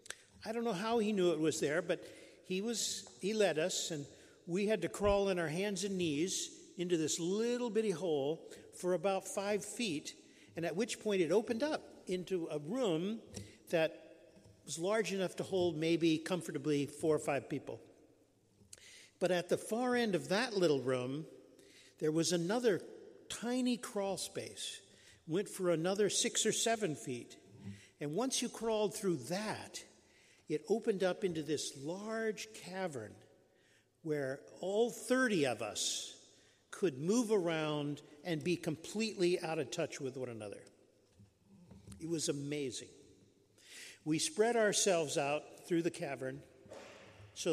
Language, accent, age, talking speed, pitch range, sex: English, American, 50-69, 150 wpm, 145-210 Hz, male